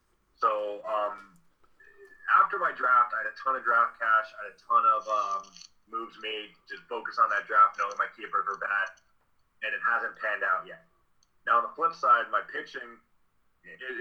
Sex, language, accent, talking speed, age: male, English, American, 190 wpm, 30-49